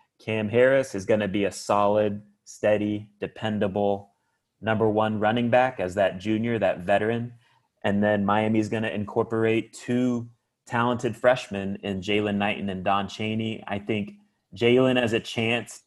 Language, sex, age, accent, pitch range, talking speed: English, male, 30-49, American, 100-115 Hz, 145 wpm